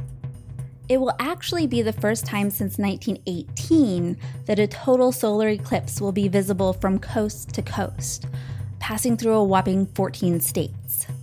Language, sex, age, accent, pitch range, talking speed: English, female, 20-39, American, 150-235 Hz, 145 wpm